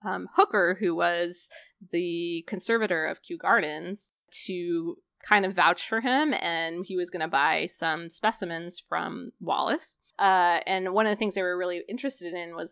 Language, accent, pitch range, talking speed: English, American, 175-230 Hz, 175 wpm